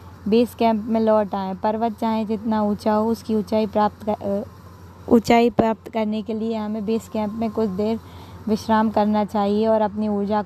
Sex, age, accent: female, 20-39, native